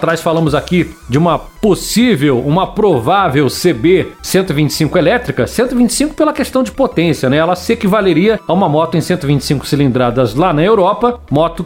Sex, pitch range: male, 155-205 Hz